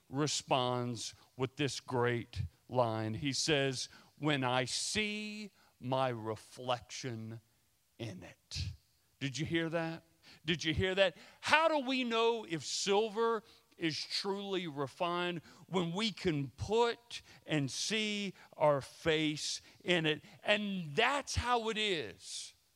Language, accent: English, American